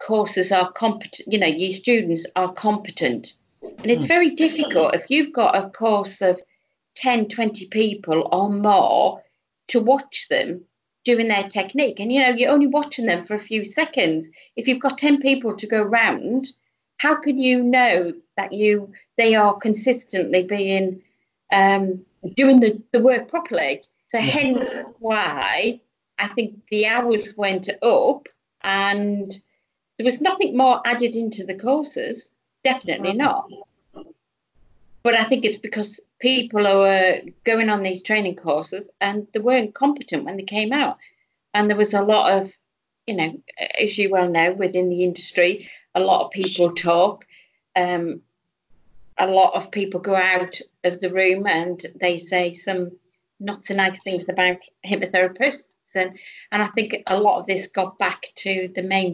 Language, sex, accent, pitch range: English, female, British, 185-245 Hz